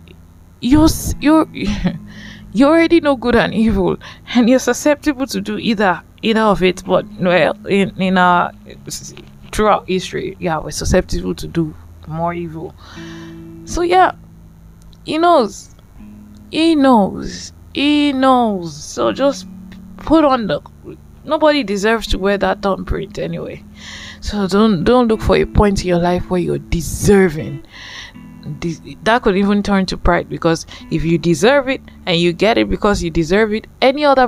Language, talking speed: English, 150 wpm